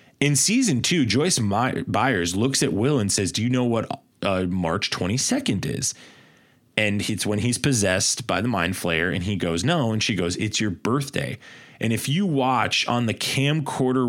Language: English